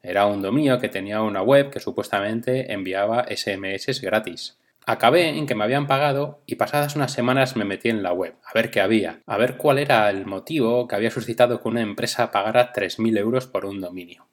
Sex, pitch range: male, 110-135 Hz